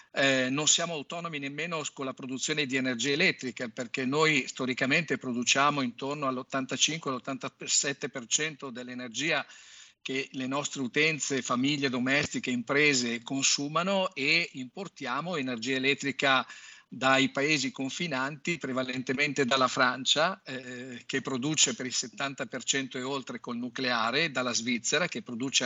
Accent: native